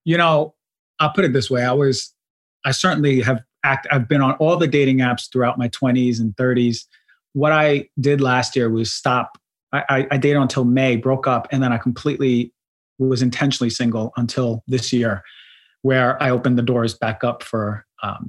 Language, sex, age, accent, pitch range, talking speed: English, male, 30-49, American, 120-140 Hz, 195 wpm